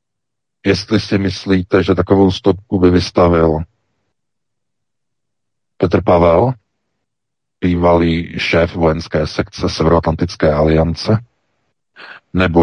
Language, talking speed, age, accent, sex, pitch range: Czech, 80 wpm, 40-59, native, male, 80-90 Hz